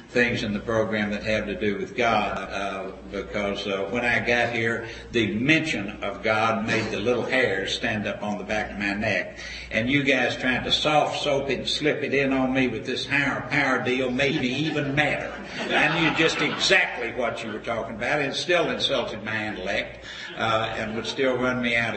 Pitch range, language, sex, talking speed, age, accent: 105-125 Hz, English, male, 210 wpm, 60-79, American